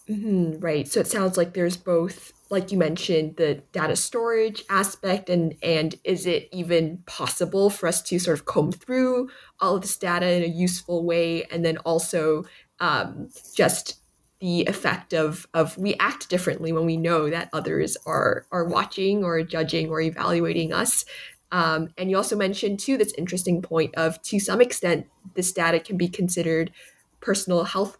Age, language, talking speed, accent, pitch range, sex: 20-39, English, 175 wpm, American, 165-195 Hz, female